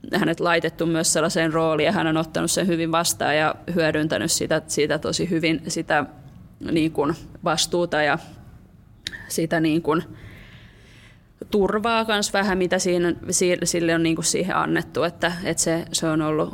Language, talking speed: Finnish, 150 wpm